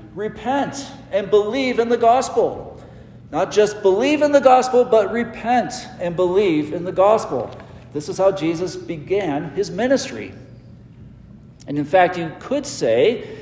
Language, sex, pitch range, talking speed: English, male, 170-230 Hz, 145 wpm